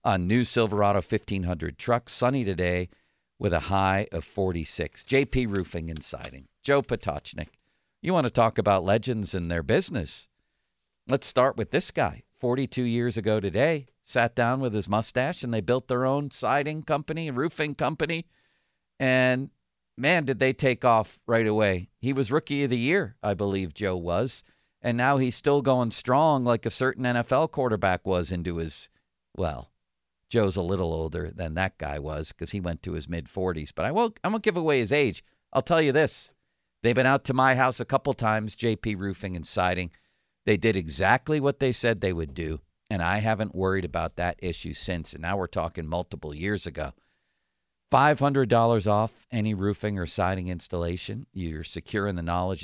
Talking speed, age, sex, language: 180 wpm, 50-69, male, English